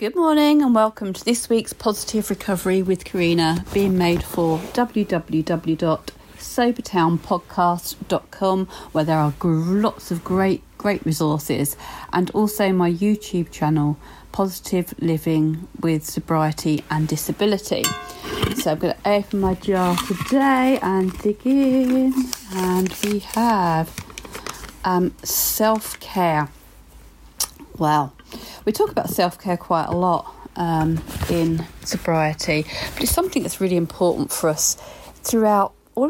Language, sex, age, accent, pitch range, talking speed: English, female, 40-59, British, 160-205 Hz, 120 wpm